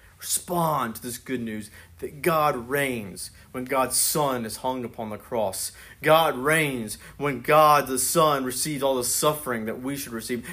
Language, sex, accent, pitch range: English, male, American, 95-155 Hz